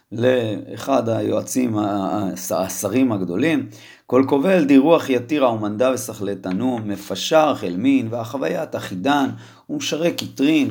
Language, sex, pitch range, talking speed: Hebrew, male, 100-135 Hz, 100 wpm